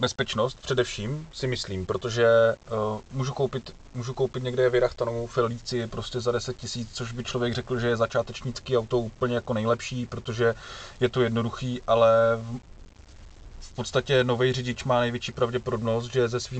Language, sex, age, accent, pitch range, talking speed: Czech, male, 30-49, native, 105-125 Hz, 155 wpm